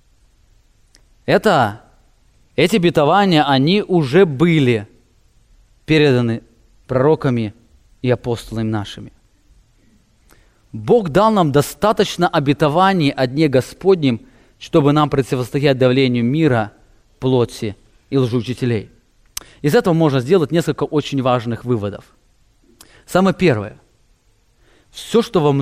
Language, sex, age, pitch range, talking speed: English, male, 20-39, 120-190 Hz, 95 wpm